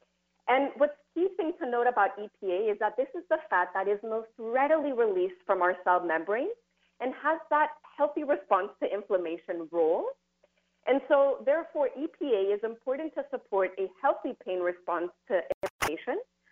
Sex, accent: female, American